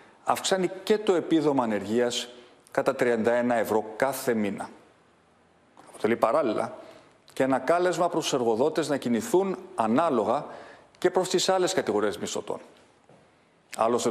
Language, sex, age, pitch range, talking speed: Greek, male, 40-59, 120-160 Hz, 120 wpm